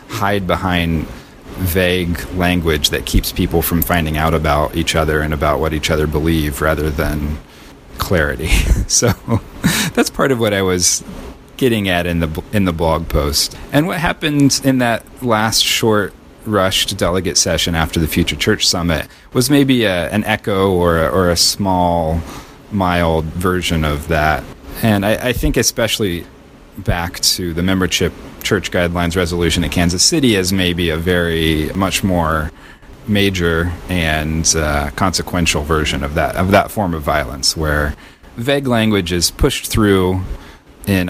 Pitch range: 80-100 Hz